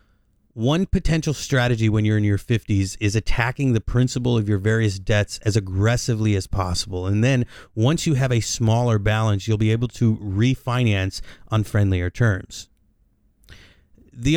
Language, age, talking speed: English, 30-49, 155 wpm